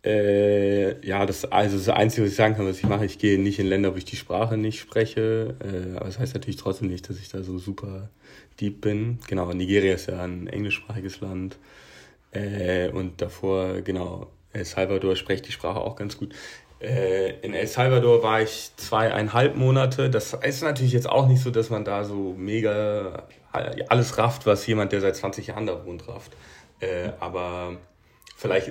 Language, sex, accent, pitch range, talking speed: German, male, German, 95-120 Hz, 180 wpm